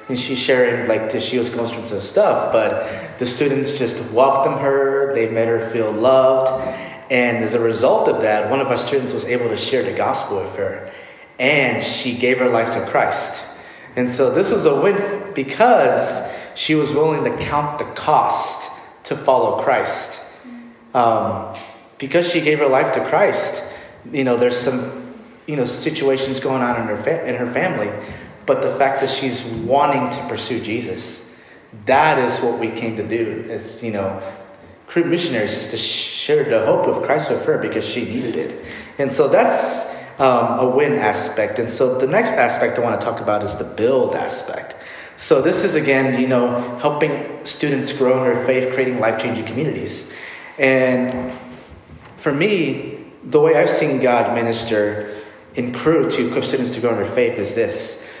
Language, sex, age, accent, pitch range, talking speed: English, male, 30-49, American, 115-155 Hz, 180 wpm